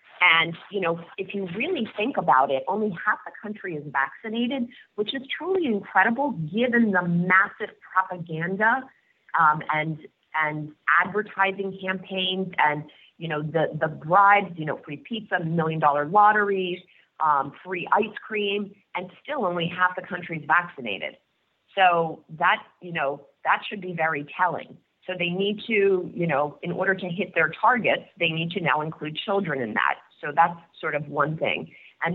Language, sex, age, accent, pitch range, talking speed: English, female, 30-49, American, 160-195 Hz, 165 wpm